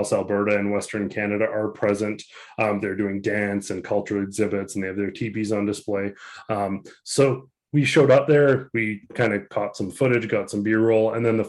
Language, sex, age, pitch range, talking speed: English, male, 20-39, 105-120 Hz, 200 wpm